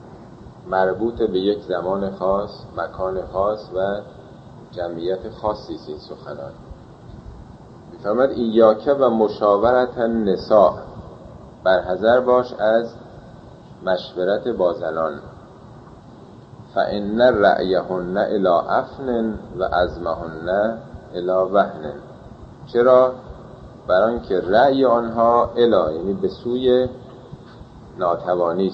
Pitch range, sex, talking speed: 95-125 Hz, male, 85 wpm